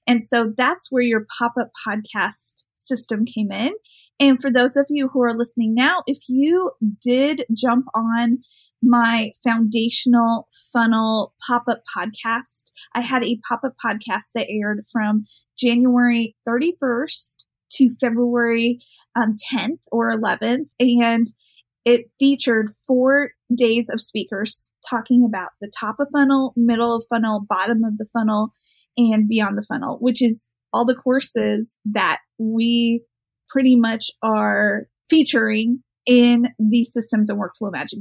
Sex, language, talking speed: female, English, 135 wpm